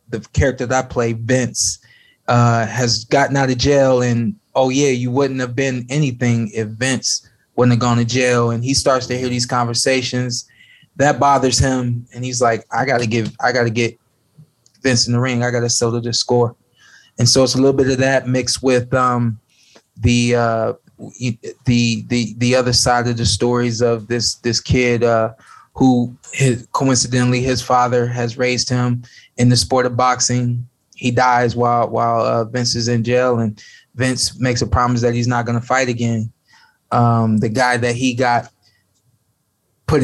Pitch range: 115-130 Hz